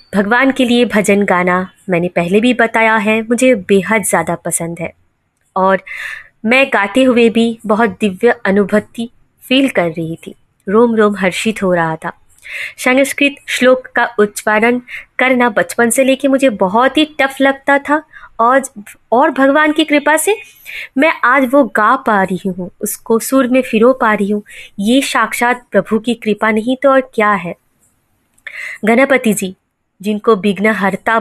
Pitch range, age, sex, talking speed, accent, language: 195-250 Hz, 20-39, female, 155 wpm, native, Hindi